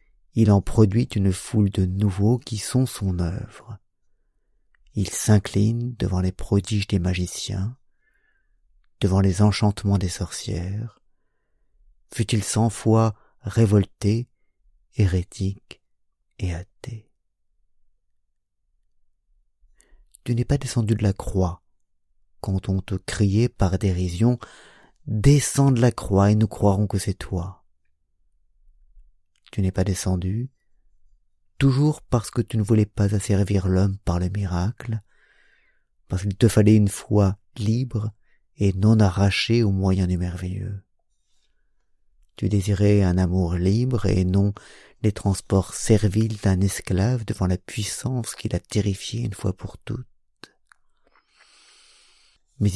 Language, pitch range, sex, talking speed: French, 95-110 Hz, male, 120 wpm